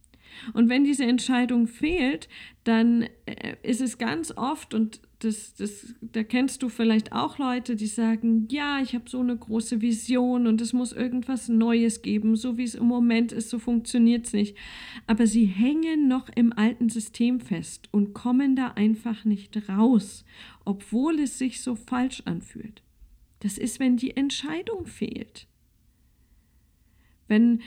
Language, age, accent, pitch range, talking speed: German, 50-69, German, 215-250 Hz, 150 wpm